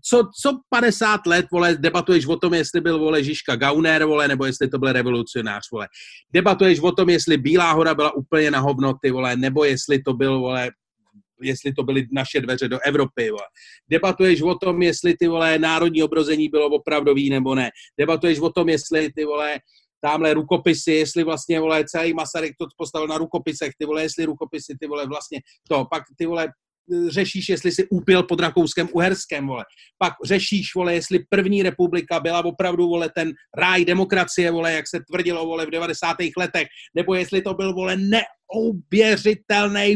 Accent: native